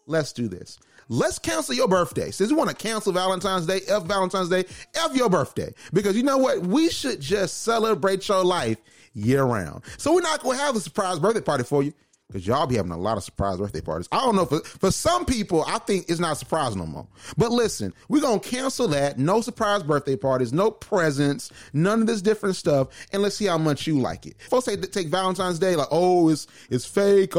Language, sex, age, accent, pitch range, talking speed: English, male, 30-49, American, 130-195 Hz, 225 wpm